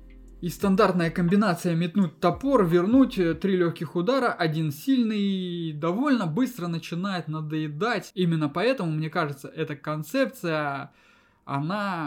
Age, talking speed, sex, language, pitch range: 20-39, 110 wpm, male, Russian, 160-210 Hz